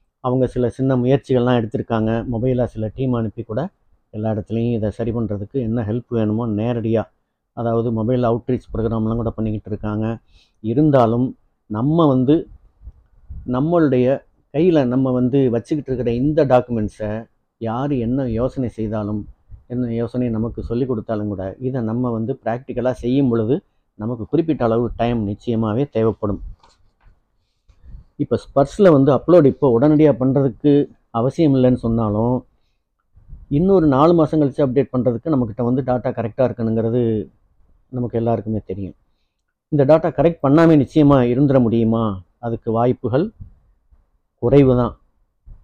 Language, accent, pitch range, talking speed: Tamil, native, 110-130 Hz, 120 wpm